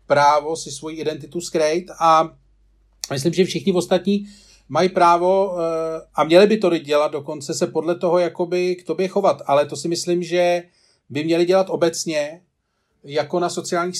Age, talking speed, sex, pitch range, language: 40-59, 160 wpm, male, 145-180 Hz, Czech